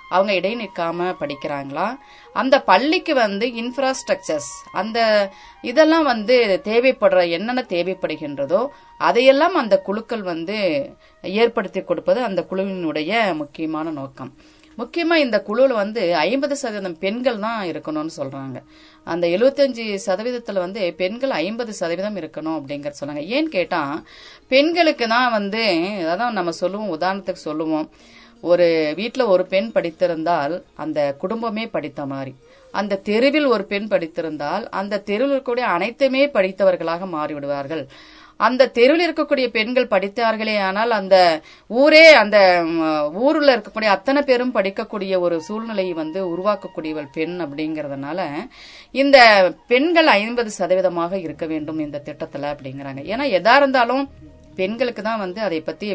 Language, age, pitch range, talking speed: Tamil, 30-49, 170-245 Hz, 120 wpm